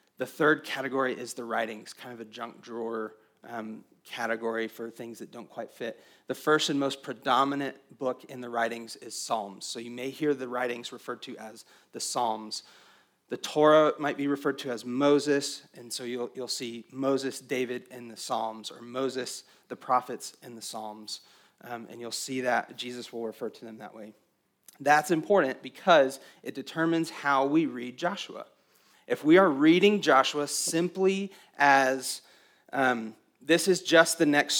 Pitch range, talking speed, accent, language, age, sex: 120-155 Hz, 175 wpm, American, English, 30-49, male